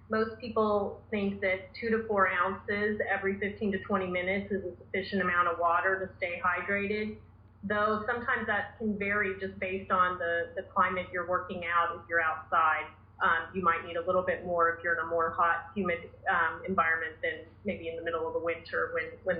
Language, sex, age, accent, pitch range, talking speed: English, female, 30-49, American, 180-210 Hz, 205 wpm